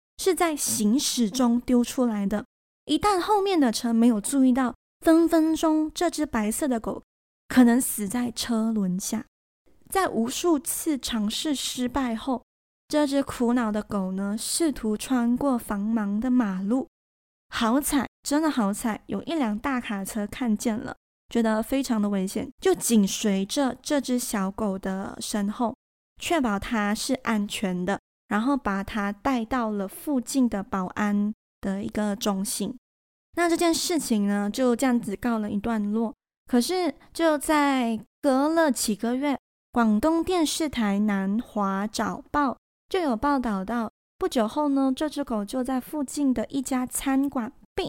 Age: 20-39